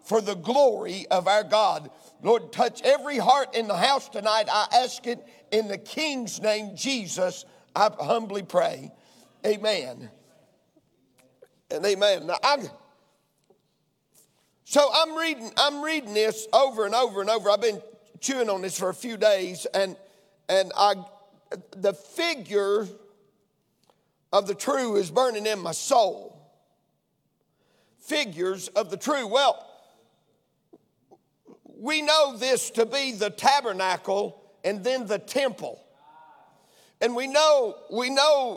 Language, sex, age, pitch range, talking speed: English, male, 50-69, 205-270 Hz, 130 wpm